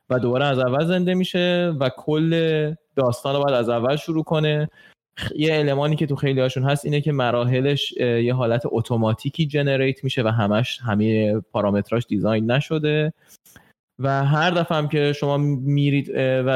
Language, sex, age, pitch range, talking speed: Persian, male, 20-39, 115-150 Hz, 150 wpm